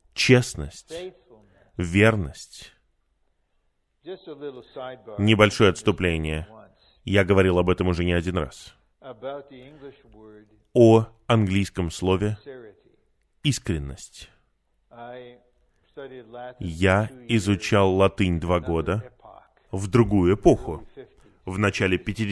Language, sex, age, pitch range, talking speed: Russian, male, 20-39, 90-125 Hz, 70 wpm